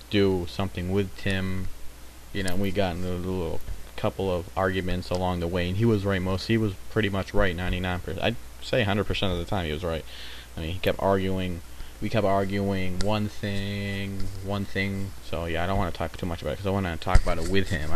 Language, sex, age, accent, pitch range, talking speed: English, male, 30-49, American, 90-105 Hz, 235 wpm